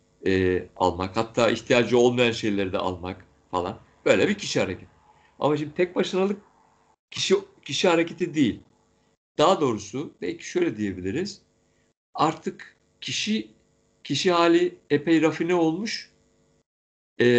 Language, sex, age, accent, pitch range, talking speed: Turkish, male, 60-79, native, 105-145 Hz, 115 wpm